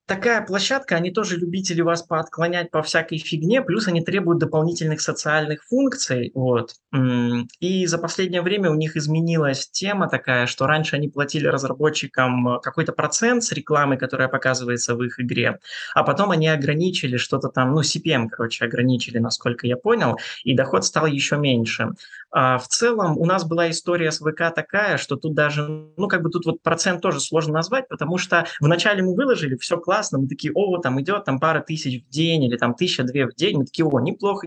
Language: Russian